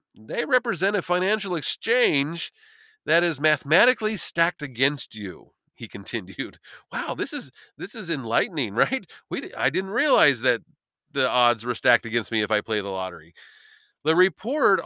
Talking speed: 155 wpm